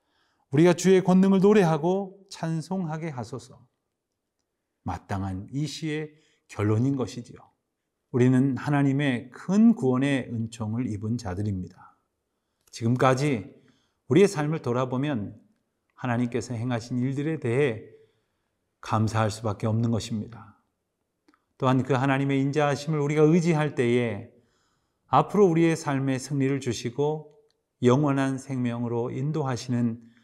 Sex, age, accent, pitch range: male, 40-59, native, 120-150 Hz